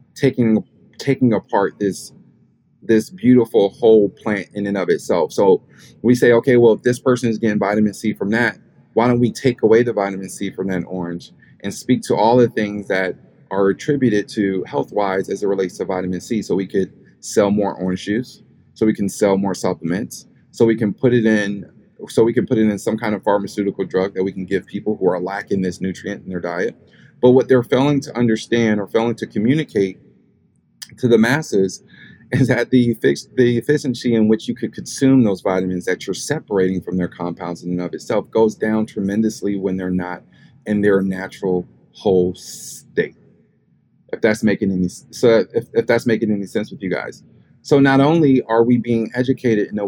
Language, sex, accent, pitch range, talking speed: English, male, American, 95-120 Hz, 200 wpm